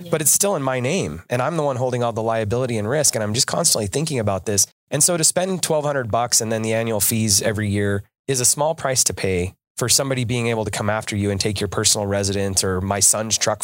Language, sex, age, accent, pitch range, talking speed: English, male, 30-49, American, 105-140 Hz, 260 wpm